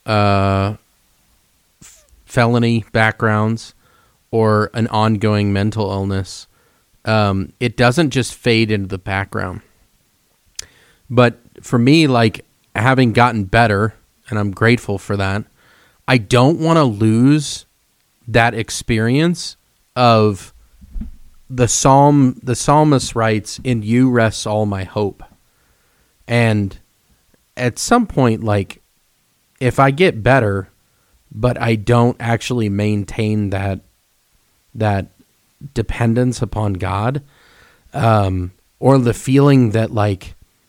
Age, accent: 30-49, American